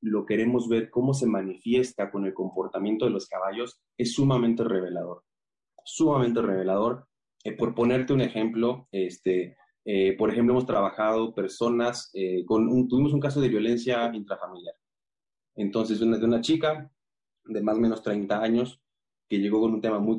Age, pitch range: 30-49, 100-125 Hz